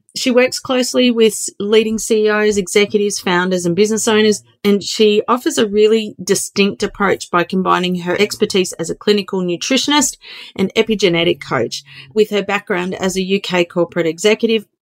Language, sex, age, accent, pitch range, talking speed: English, female, 30-49, Australian, 180-225 Hz, 150 wpm